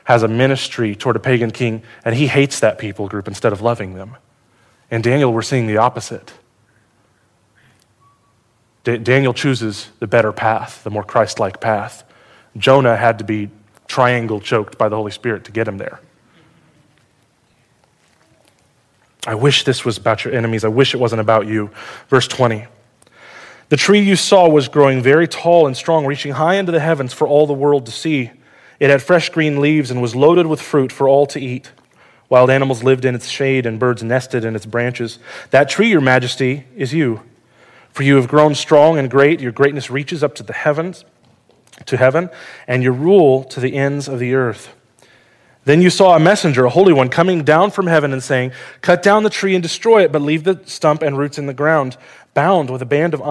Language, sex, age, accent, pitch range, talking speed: English, male, 30-49, American, 120-150 Hz, 195 wpm